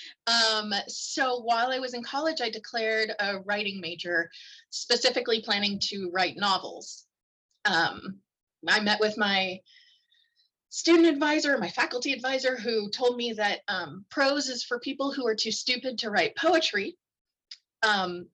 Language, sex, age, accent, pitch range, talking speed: English, female, 30-49, American, 195-275 Hz, 145 wpm